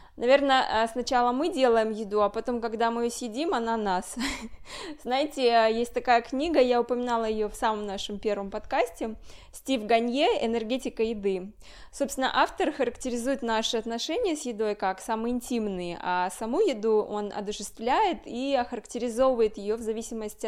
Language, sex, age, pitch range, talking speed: Russian, female, 20-39, 210-245 Hz, 145 wpm